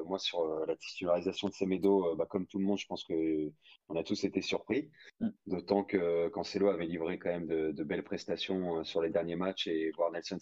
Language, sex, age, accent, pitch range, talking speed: French, male, 30-49, French, 85-100 Hz, 205 wpm